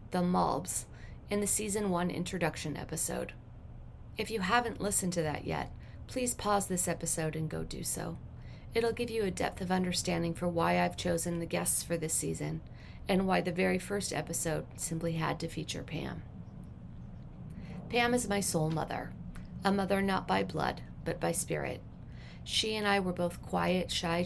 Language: English